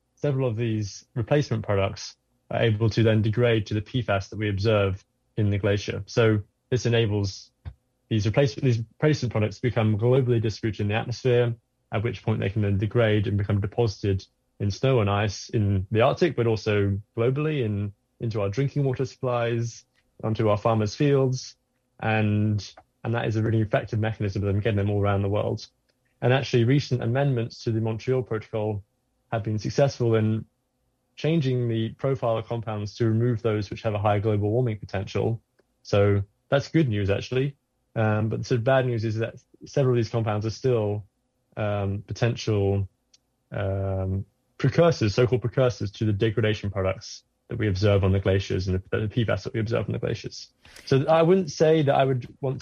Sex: male